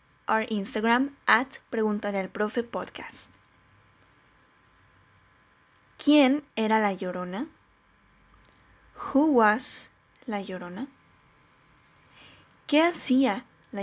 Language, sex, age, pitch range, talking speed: Spanish, female, 20-39, 205-260 Hz, 65 wpm